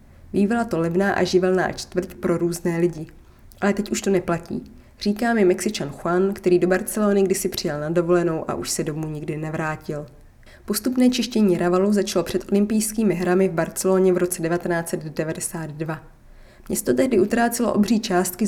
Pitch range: 170-200 Hz